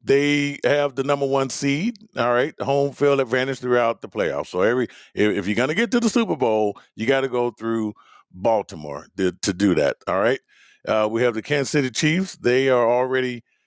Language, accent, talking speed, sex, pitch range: English, American, 210 wpm, male, 110-145 Hz